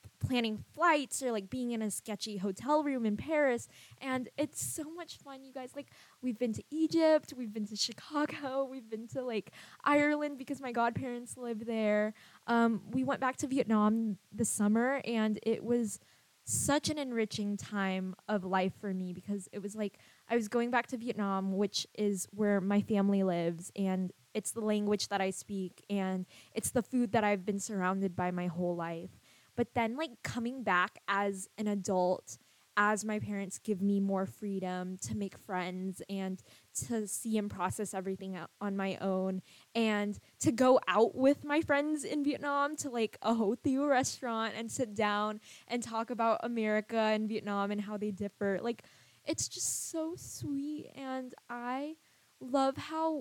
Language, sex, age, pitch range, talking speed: English, female, 20-39, 200-250 Hz, 175 wpm